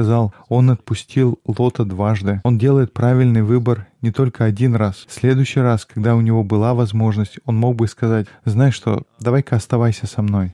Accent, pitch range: native, 110-130 Hz